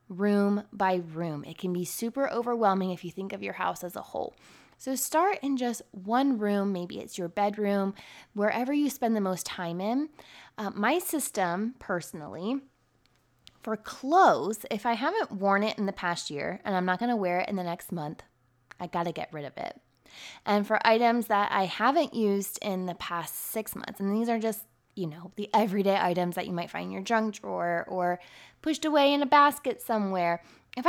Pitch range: 185-245 Hz